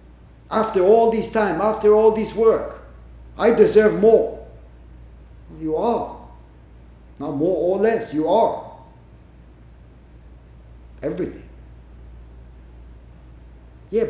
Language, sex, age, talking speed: English, male, 60-79, 90 wpm